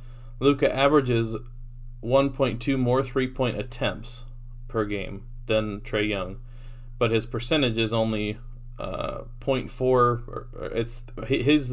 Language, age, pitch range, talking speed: English, 20-39, 110-120 Hz, 100 wpm